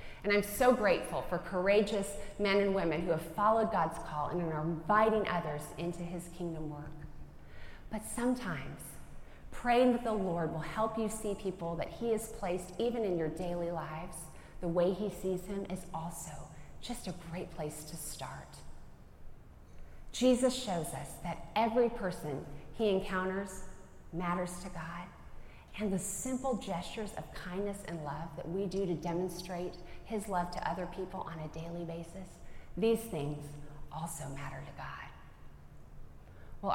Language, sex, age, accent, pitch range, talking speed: English, female, 30-49, American, 155-200 Hz, 155 wpm